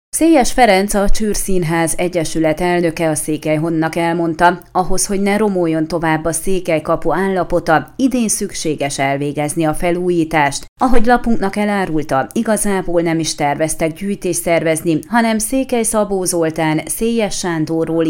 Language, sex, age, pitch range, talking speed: Hungarian, female, 30-49, 165-205 Hz, 130 wpm